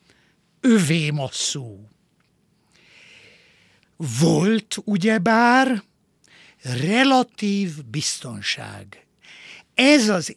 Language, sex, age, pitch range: Hungarian, male, 60-79, 150-215 Hz